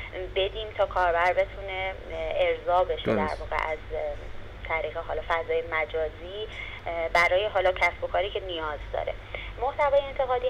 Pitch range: 175-220 Hz